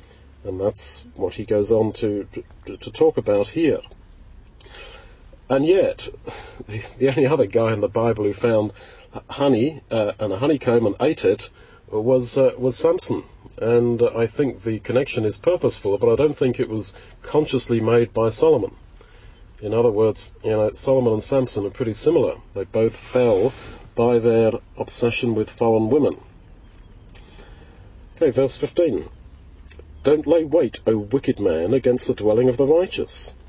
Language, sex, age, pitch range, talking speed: English, male, 40-59, 105-140 Hz, 160 wpm